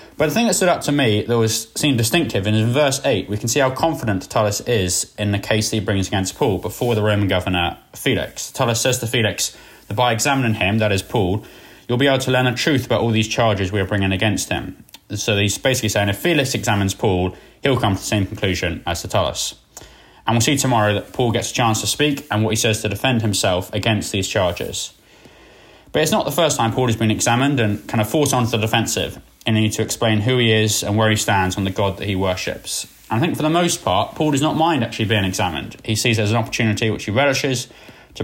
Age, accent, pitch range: 20-39, British, 105-125 Hz